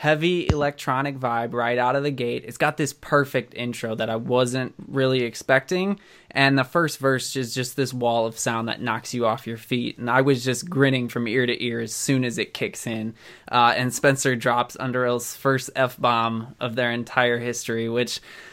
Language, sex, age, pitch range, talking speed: English, male, 20-39, 120-145 Hz, 200 wpm